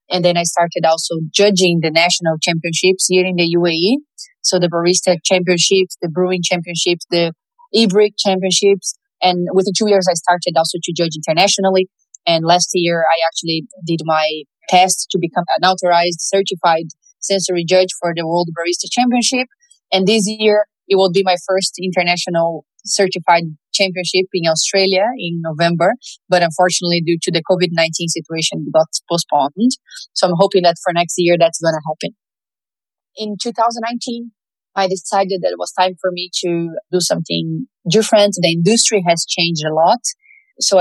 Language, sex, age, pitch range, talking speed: English, female, 20-39, 170-195 Hz, 160 wpm